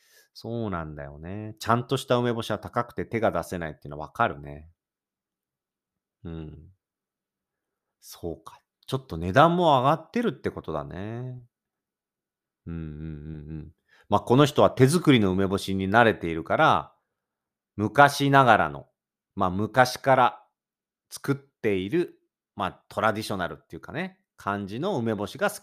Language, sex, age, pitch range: Japanese, male, 40-59, 95-140 Hz